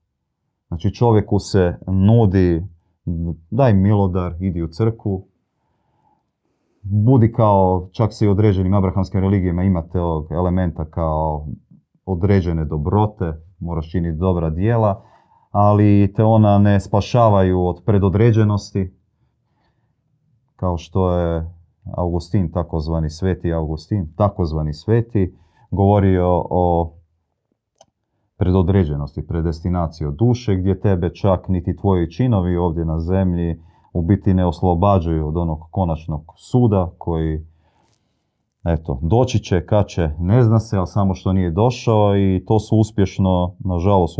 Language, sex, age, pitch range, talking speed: Croatian, male, 30-49, 85-105 Hz, 110 wpm